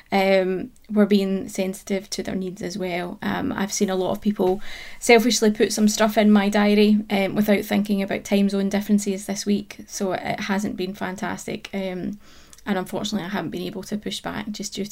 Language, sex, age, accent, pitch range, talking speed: English, female, 20-39, British, 185-210 Hz, 195 wpm